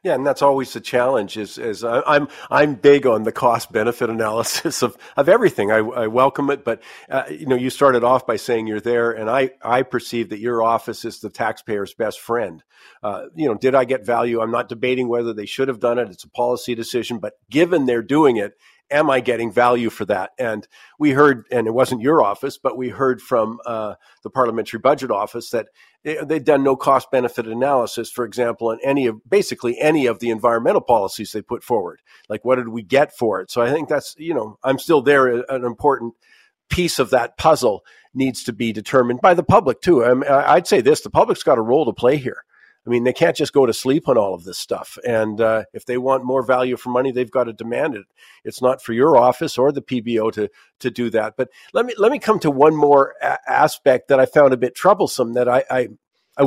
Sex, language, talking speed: male, English, 230 wpm